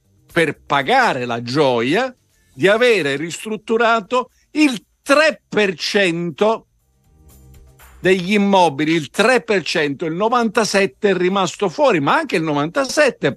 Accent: native